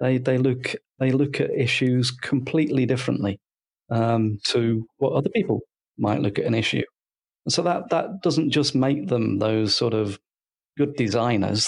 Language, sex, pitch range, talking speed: English, male, 110-140 Hz, 165 wpm